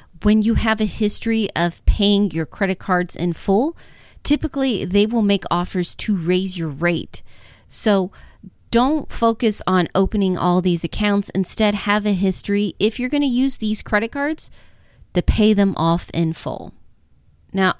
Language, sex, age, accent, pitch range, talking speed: English, female, 30-49, American, 165-210 Hz, 160 wpm